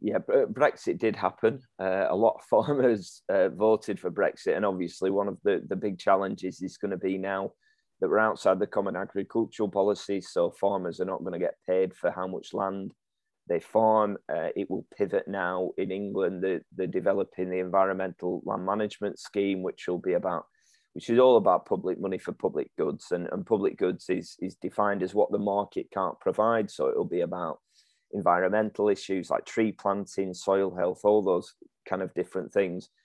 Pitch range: 95-120 Hz